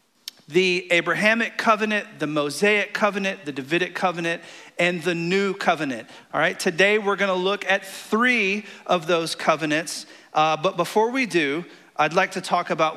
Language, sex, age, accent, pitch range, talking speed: English, male, 40-59, American, 160-220 Hz, 155 wpm